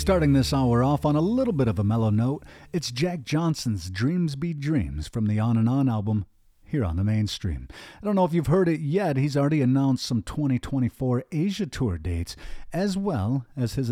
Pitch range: 105-145 Hz